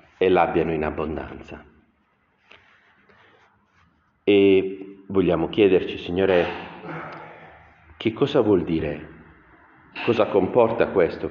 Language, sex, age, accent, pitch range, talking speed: Italian, male, 40-59, native, 85-100 Hz, 80 wpm